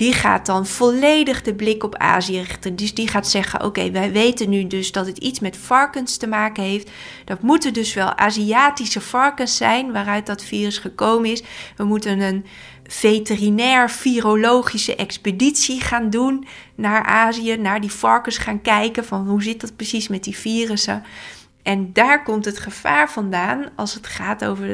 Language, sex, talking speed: Dutch, female, 170 wpm